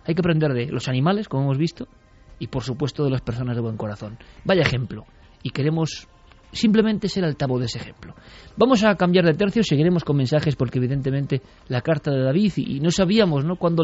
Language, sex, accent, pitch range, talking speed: Spanish, male, Spanish, 125-165 Hz, 205 wpm